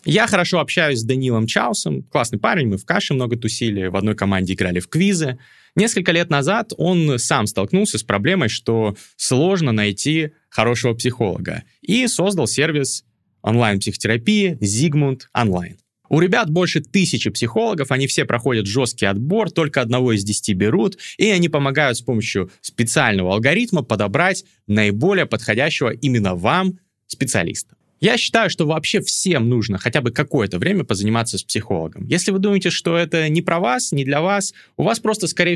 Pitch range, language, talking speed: 110-175 Hz, Russian, 160 wpm